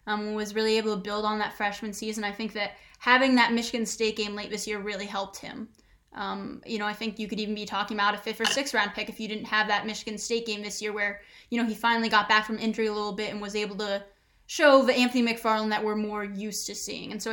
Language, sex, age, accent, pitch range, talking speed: English, female, 10-29, American, 210-230 Hz, 270 wpm